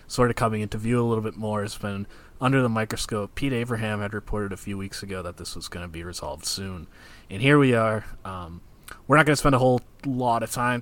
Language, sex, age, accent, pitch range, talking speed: English, male, 20-39, American, 100-115 Hz, 250 wpm